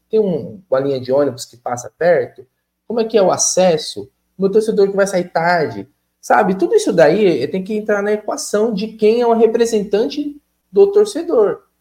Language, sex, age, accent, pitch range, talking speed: Portuguese, male, 20-39, Brazilian, 145-215 Hz, 190 wpm